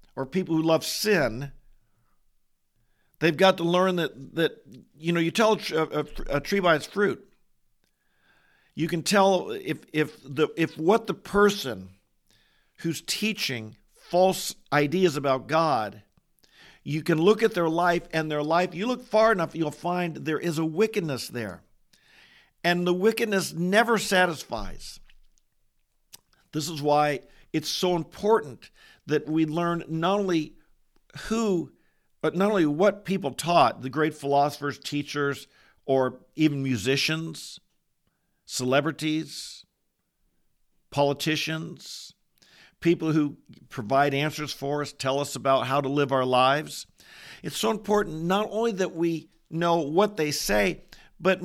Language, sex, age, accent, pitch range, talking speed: English, male, 50-69, American, 145-185 Hz, 135 wpm